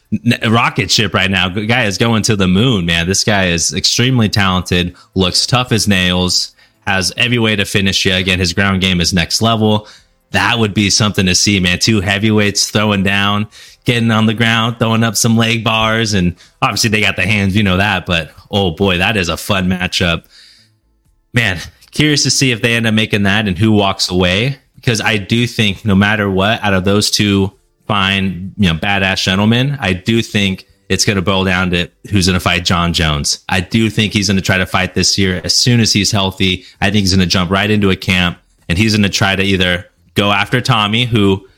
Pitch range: 95-115 Hz